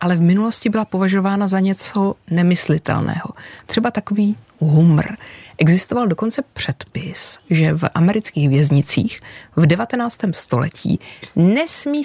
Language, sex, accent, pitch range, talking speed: Czech, female, native, 155-200 Hz, 110 wpm